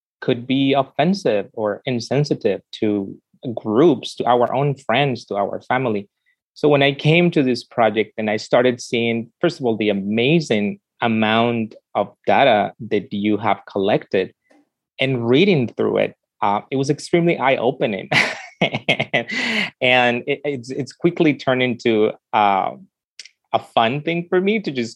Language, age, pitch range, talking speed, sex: English, 20-39, 105-130 Hz, 145 wpm, male